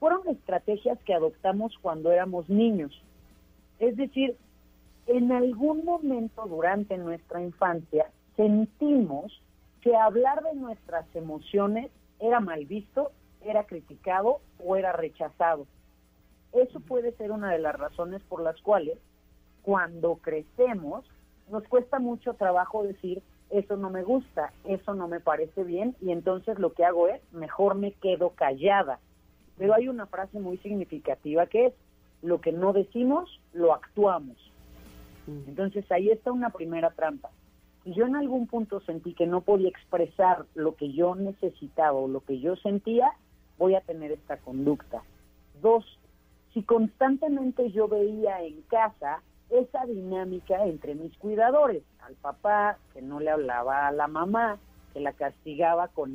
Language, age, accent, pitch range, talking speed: Spanish, 40-59, Mexican, 160-225 Hz, 145 wpm